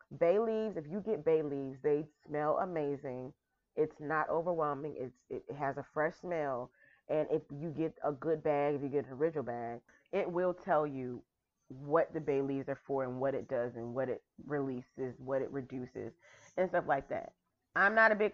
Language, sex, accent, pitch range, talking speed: English, female, American, 140-175 Hz, 195 wpm